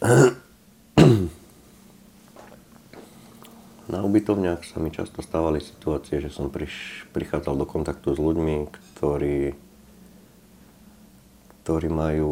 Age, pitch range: 50-69, 70-80 Hz